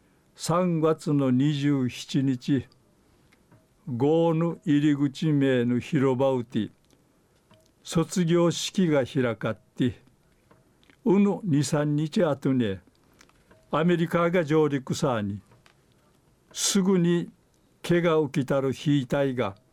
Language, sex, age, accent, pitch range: Japanese, male, 60-79, native, 125-165 Hz